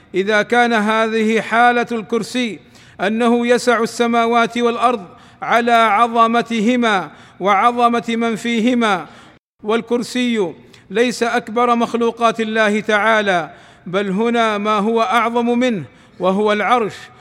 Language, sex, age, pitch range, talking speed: Arabic, male, 50-69, 215-240 Hz, 100 wpm